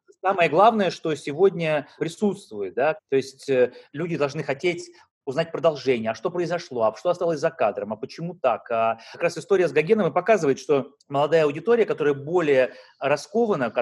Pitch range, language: 125-170 Hz, Russian